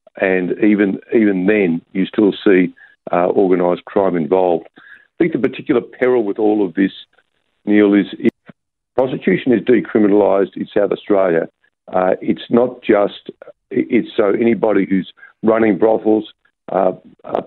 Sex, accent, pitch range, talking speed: male, Australian, 95-110 Hz, 135 wpm